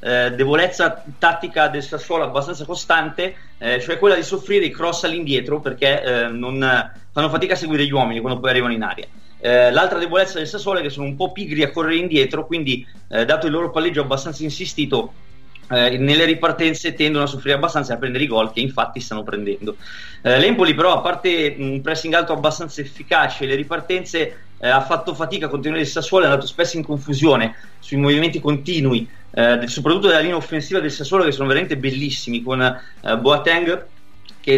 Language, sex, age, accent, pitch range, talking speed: Italian, male, 30-49, native, 130-170 Hz, 175 wpm